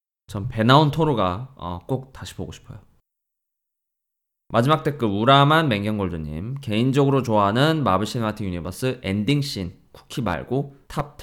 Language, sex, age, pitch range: Korean, male, 20-39, 100-135 Hz